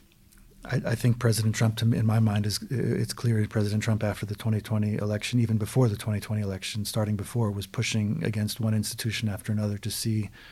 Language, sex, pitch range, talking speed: English, male, 110-115 Hz, 190 wpm